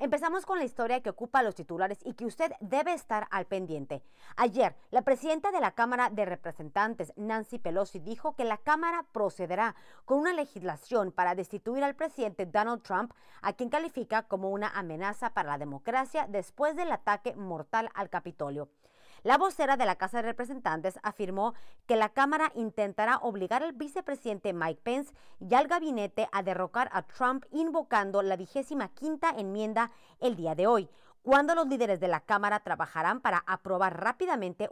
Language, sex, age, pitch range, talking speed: Spanish, female, 30-49, 180-260 Hz, 170 wpm